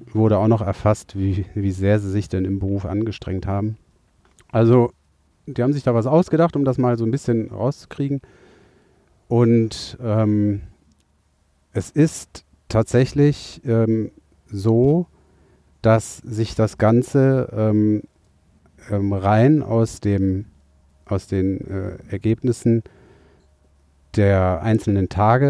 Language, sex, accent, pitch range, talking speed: German, male, German, 100-120 Hz, 120 wpm